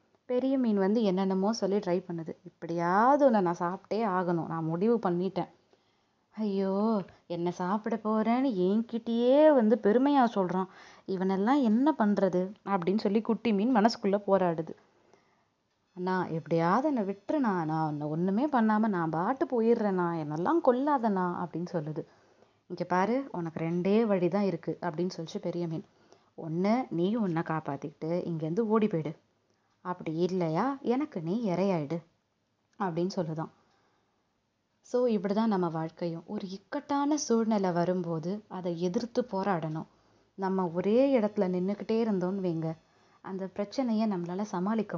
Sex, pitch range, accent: female, 175-225 Hz, native